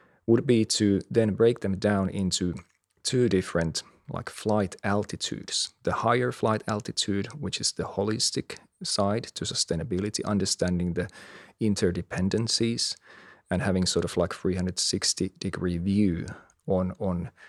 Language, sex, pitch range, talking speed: English, male, 90-110 Hz, 125 wpm